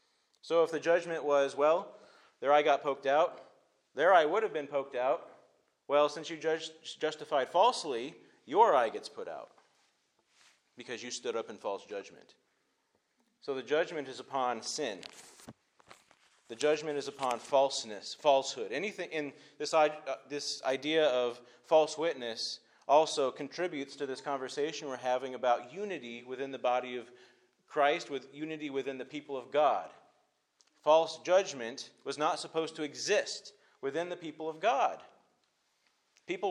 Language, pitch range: English, 140-165 Hz